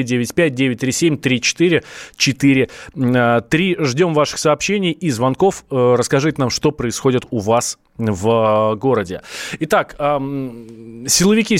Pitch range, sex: 125-155 Hz, male